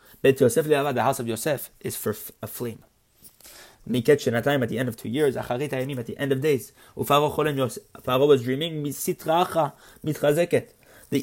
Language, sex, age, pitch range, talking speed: English, male, 30-49, 125-155 Hz, 120 wpm